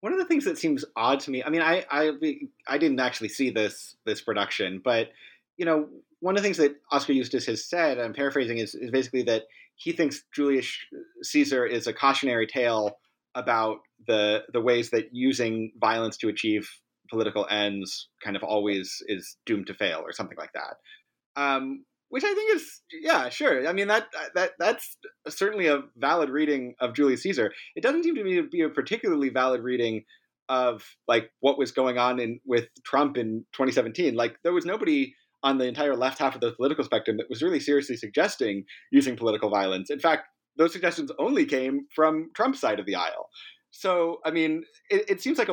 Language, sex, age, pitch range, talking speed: English, male, 30-49, 120-170 Hz, 200 wpm